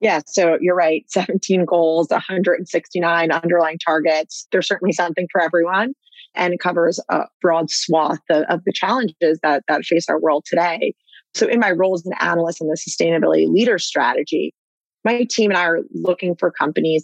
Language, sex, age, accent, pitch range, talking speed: English, female, 30-49, American, 165-185 Hz, 175 wpm